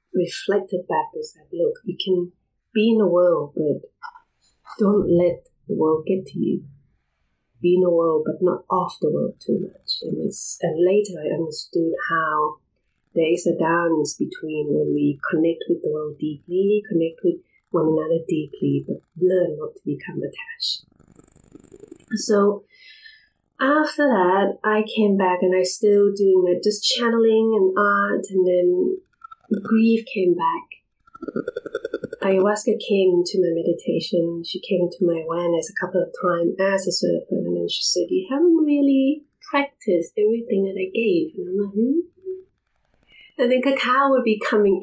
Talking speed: 160 wpm